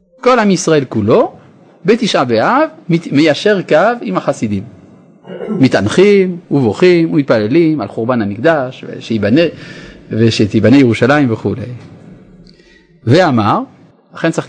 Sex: male